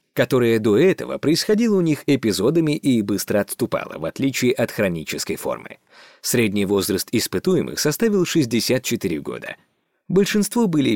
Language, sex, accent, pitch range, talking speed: Russian, male, native, 115-185 Hz, 125 wpm